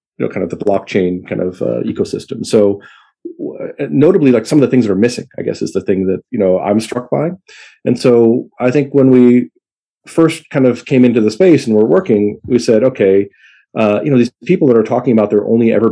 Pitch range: 100-125 Hz